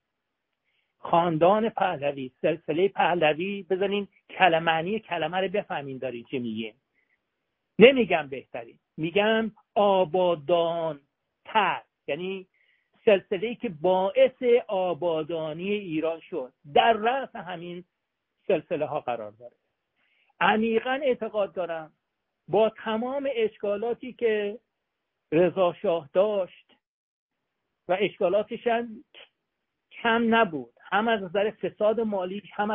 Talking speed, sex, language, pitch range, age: 90 wpm, male, Persian, 170-220 Hz, 60-79